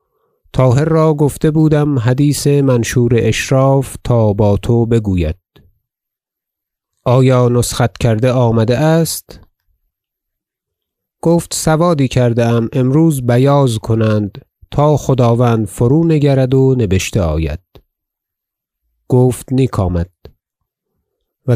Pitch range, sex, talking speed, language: 105-130 Hz, male, 90 wpm, Persian